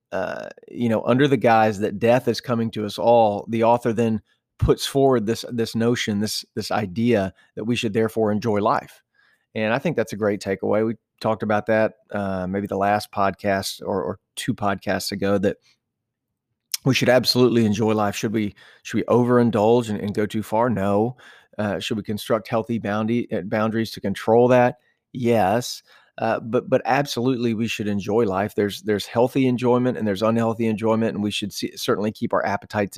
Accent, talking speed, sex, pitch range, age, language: American, 185 wpm, male, 105-120 Hz, 30-49, English